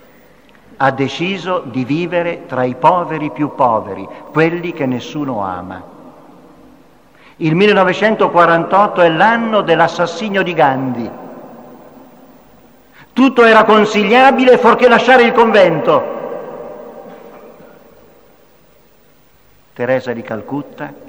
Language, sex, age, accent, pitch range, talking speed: Italian, male, 50-69, native, 150-205 Hz, 85 wpm